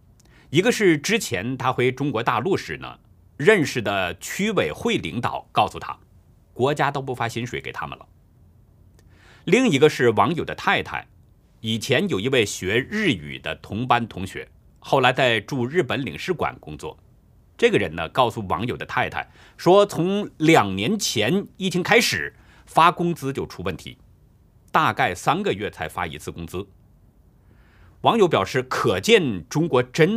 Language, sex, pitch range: Chinese, male, 95-150 Hz